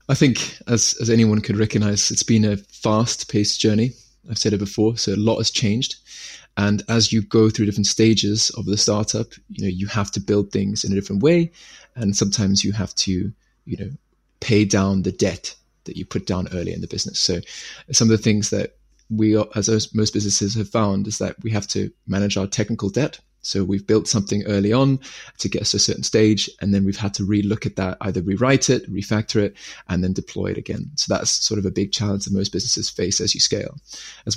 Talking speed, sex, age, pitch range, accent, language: 225 wpm, male, 20-39, 100-110 Hz, British, English